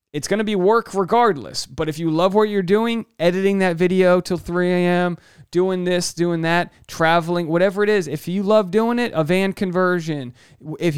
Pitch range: 150-200 Hz